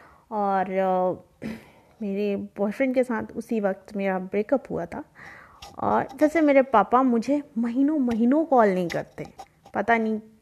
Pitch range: 200-280 Hz